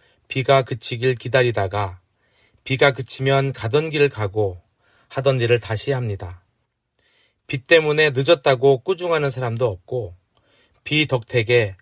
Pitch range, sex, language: 110-145 Hz, male, Korean